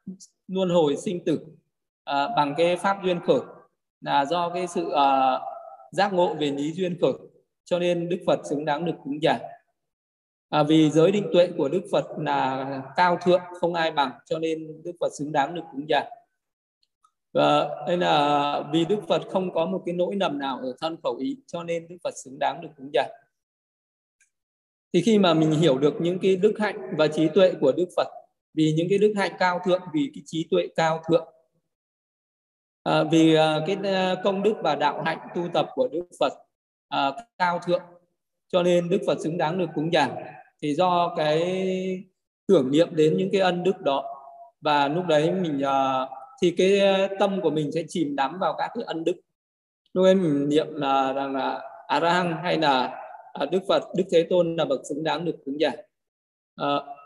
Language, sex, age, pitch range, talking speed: Vietnamese, male, 20-39, 150-185 Hz, 190 wpm